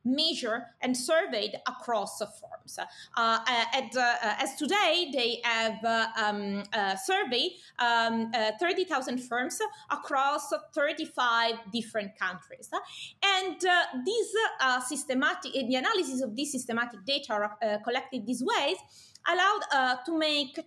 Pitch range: 235-340 Hz